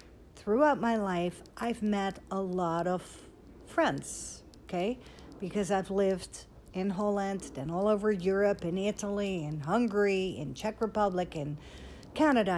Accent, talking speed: American, 135 wpm